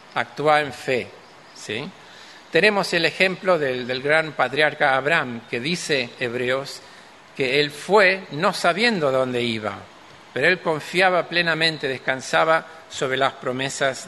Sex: male